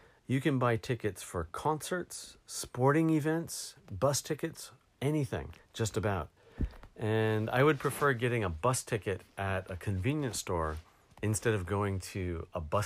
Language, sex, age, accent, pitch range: Japanese, male, 40-59, American, 95-130 Hz